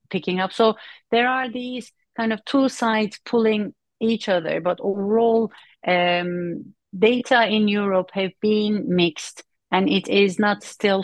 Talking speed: 145 wpm